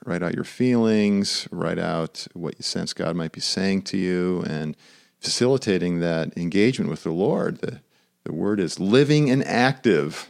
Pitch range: 90-115 Hz